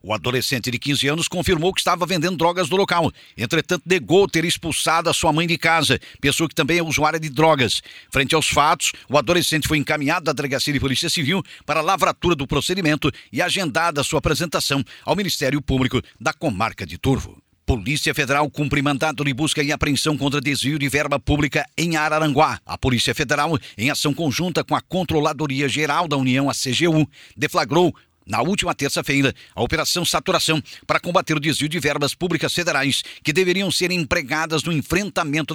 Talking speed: 180 wpm